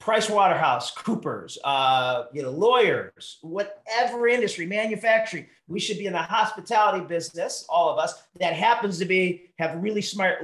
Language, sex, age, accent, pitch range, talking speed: English, male, 40-59, American, 140-205 Hz, 150 wpm